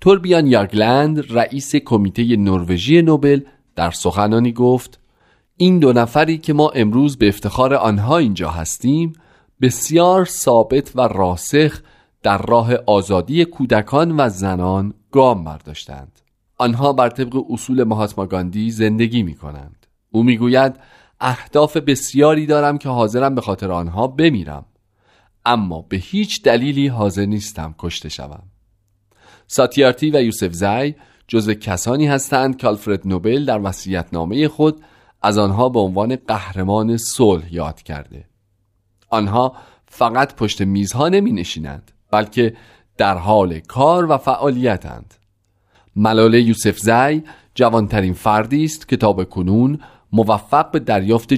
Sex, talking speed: male, 120 wpm